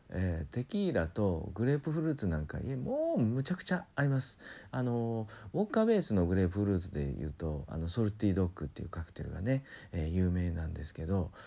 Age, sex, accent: 40-59, male, native